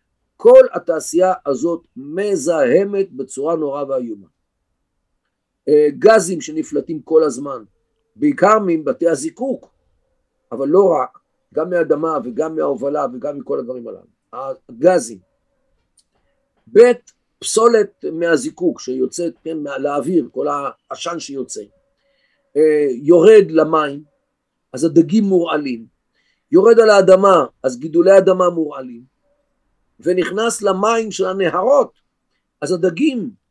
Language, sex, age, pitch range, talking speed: Hebrew, male, 50-69, 160-245 Hz, 95 wpm